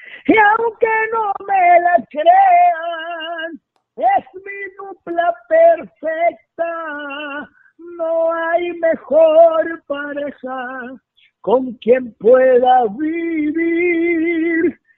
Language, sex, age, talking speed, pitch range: Spanish, male, 50-69, 70 wpm, 320-390 Hz